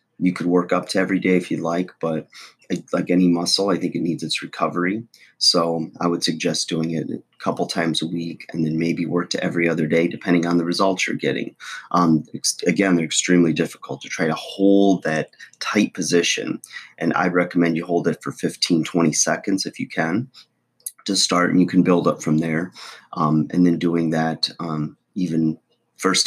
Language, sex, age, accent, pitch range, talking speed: English, male, 30-49, American, 80-90 Hz, 200 wpm